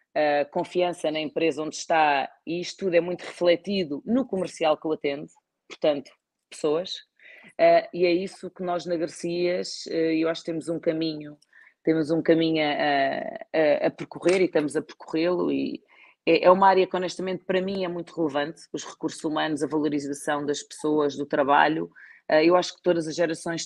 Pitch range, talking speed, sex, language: 150-175 Hz, 185 wpm, female, Portuguese